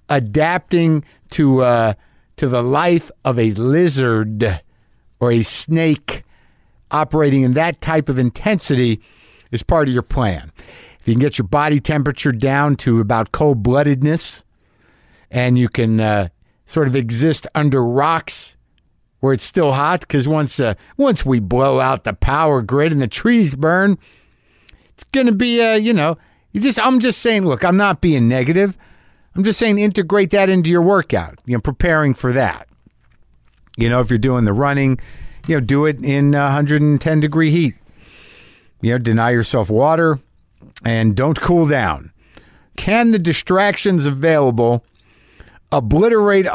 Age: 50-69